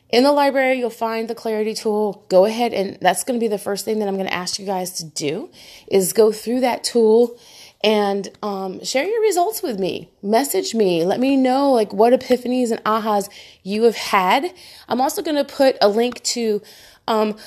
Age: 30-49